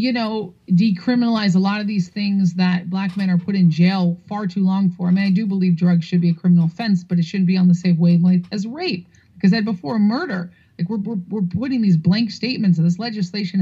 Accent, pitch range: American, 175-205 Hz